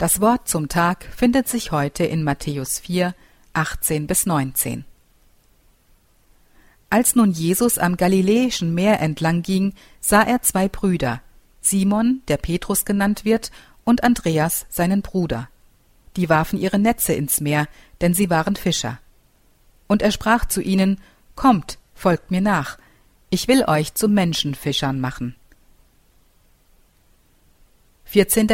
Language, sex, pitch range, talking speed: German, female, 155-200 Hz, 120 wpm